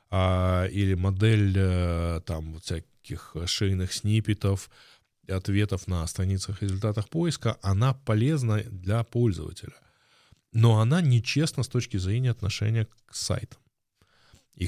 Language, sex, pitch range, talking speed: Russian, male, 95-115 Hz, 105 wpm